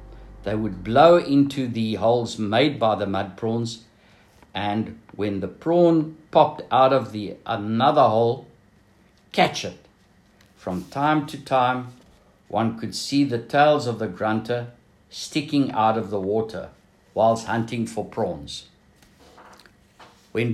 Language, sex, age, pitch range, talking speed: English, male, 60-79, 100-145 Hz, 130 wpm